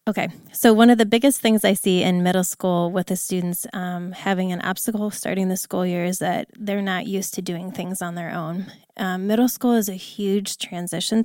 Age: 20-39